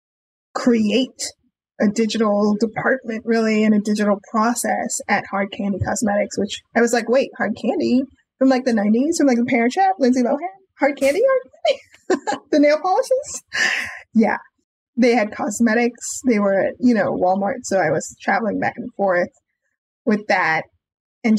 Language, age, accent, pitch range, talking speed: English, 20-39, American, 220-265 Hz, 165 wpm